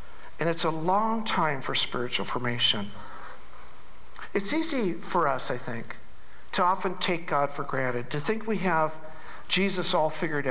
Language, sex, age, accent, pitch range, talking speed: English, male, 60-79, American, 125-165 Hz, 155 wpm